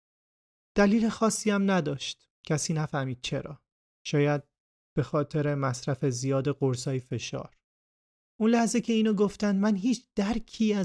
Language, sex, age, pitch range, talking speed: Persian, male, 30-49, 140-180 Hz, 120 wpm